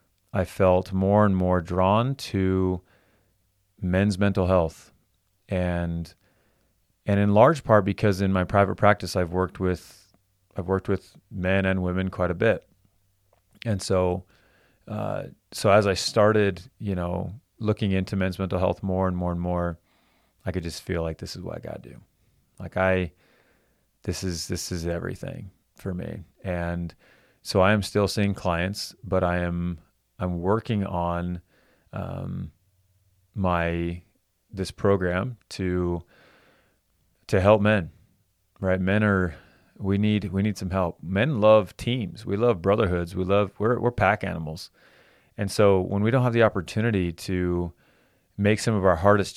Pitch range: 90-100 Hz